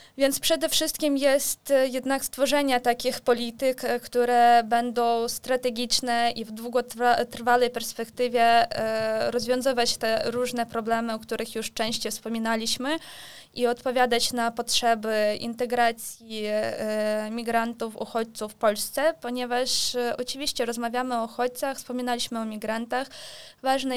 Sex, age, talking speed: female, 20-39, 105 wpm